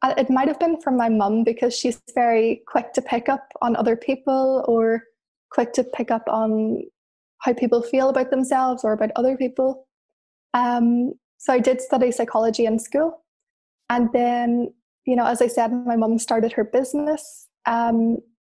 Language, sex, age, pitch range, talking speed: English, female, 20-39, 235-270 Hz, 175 wpm